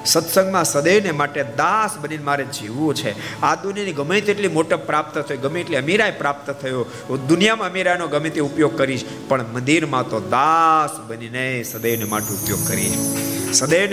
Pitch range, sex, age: 120-155 Hz, male, 50-69